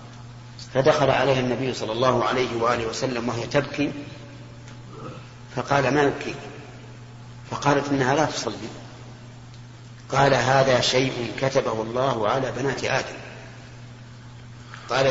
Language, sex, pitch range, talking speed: Arabic, male, 120-140 Hz, 105 wpm